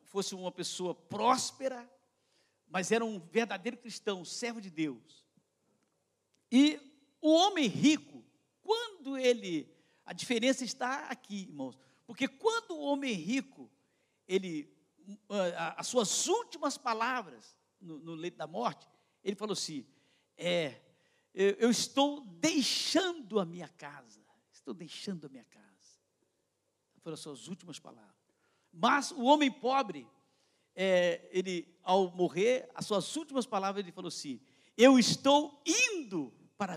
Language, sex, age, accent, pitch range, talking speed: Portuguese, male, 60-79, Brazilian, 170-260 Hz, 130 wpm